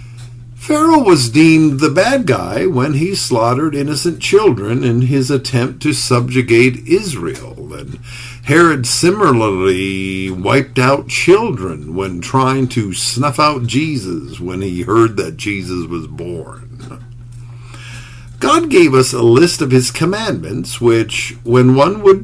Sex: male